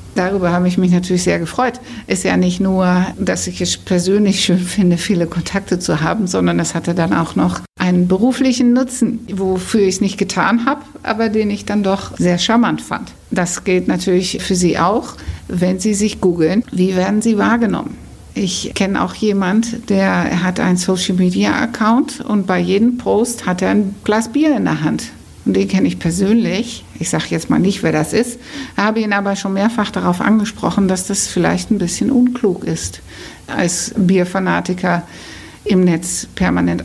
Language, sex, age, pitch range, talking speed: German, female, 60-79, 180-220 Hz, 180 wpm